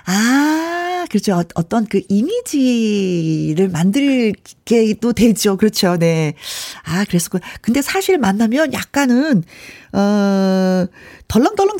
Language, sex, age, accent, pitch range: Korean, female, 40-59, native, 185-265 Hz